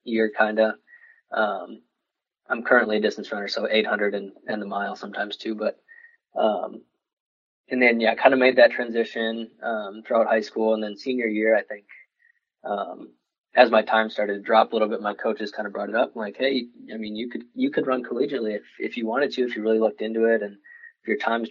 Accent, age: American, 20-39